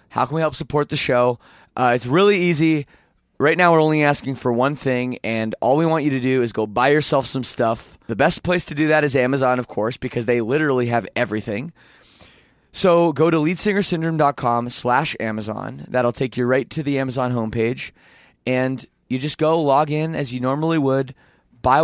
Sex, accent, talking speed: male, American, 200 wpm